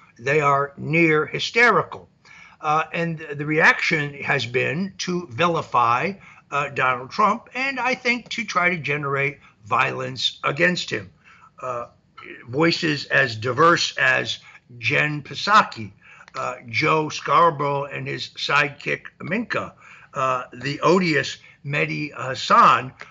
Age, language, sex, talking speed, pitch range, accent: 60-79, English, male, 115 wpm, 150-200 Hz, American